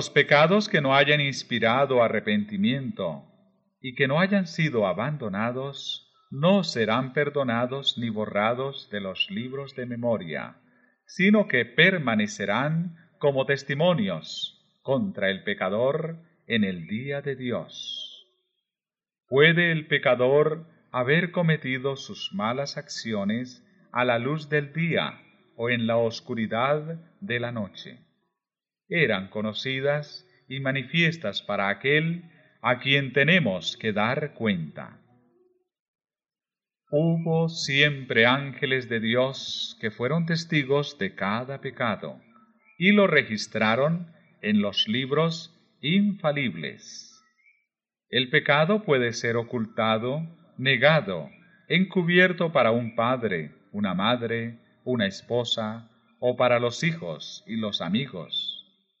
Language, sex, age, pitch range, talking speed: Spanish, male, 40-59, 125-185 Hz, 110 wpm